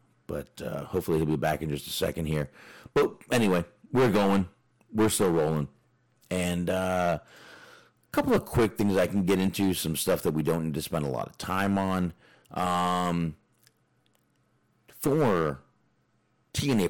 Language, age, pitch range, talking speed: English, 40-59, 75-110 Hz, 160 wpm